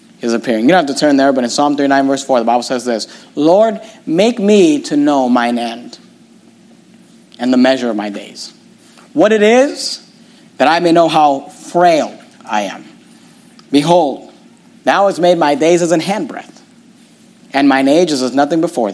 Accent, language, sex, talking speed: American, English, male, 185 wpm